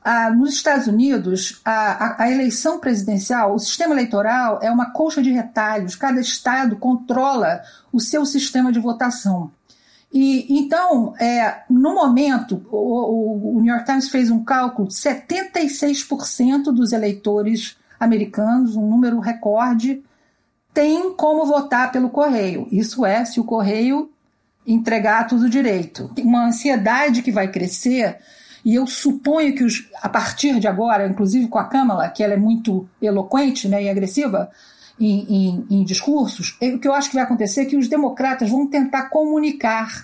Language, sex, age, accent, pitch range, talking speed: Portuguese, female, 50-69, Brazilian, 220-275 Hz, 145 wpm